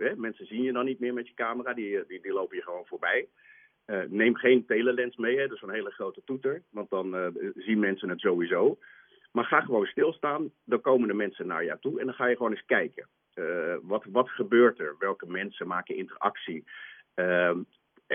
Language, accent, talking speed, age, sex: Dutch, Dutch, 210 wpm, 50-69, male